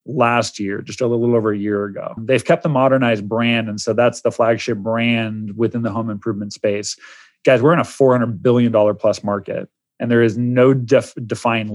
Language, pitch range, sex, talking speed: English, 115-135 Hz, male, 210 wpm